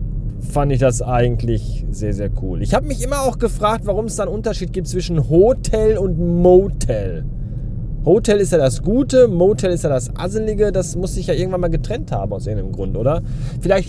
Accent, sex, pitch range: German, male, 125-190 Hz